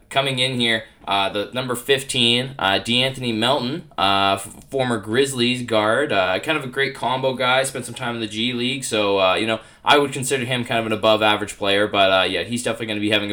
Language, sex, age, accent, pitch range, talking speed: English, male, 20-39, American, 105-120 Hz, 230 wpm